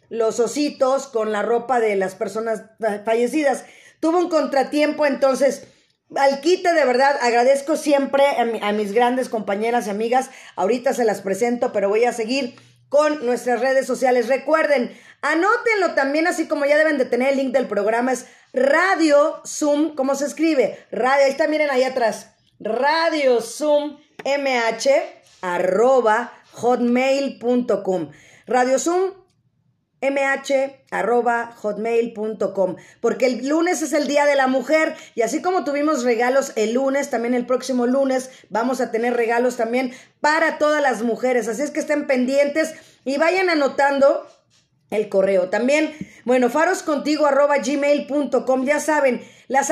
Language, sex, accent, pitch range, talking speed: Spanish, female, Mexican, 235-290 Hz, 140 wpm